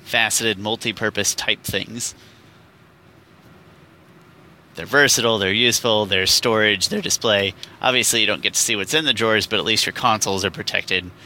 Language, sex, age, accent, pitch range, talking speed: English, male, 30-49, American, 100-125 Hz, 155 wpm